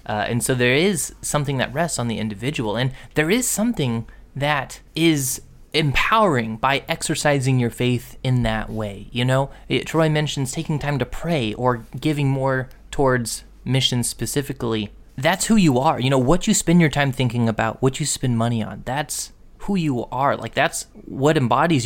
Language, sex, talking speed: English, male, 180 wpm